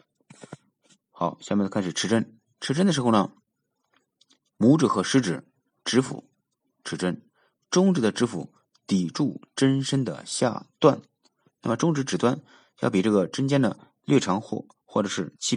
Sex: male